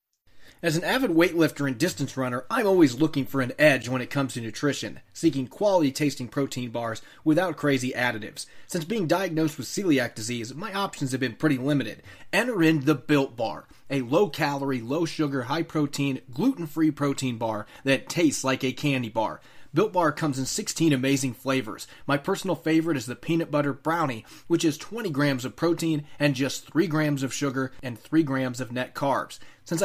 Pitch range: 130-165 Hz